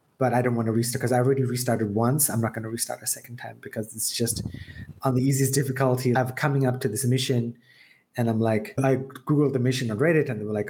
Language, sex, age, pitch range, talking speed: English, male, 20-39, 115-135 Hz, 250 wpm